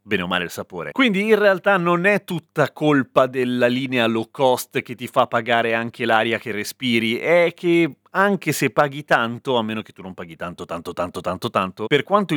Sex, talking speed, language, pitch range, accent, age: male, 210 wpm, Italian, 110-150 Hz, native, 30-49